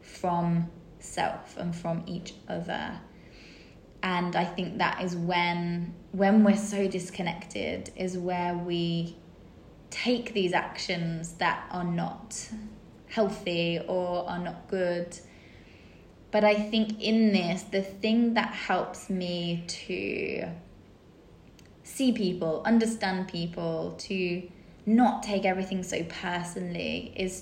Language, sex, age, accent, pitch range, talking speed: English, female, 20-39, British, 175-205 Hz, 115 wpm